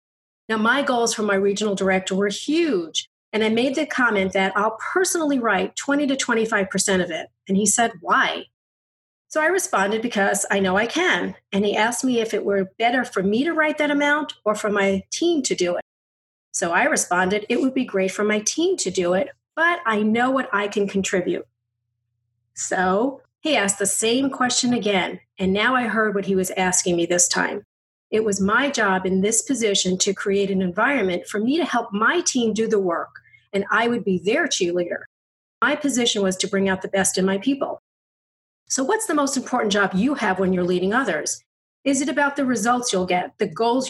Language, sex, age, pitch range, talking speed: English, female, 40-59, 190-250 Hz, 210 wpm